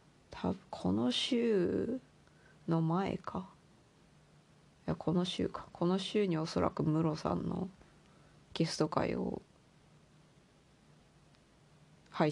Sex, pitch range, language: female, 155-175 Hz, Japanese